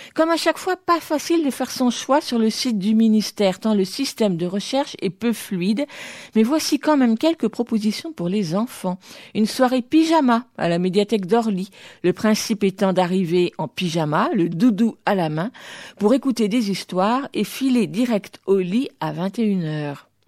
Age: 50-69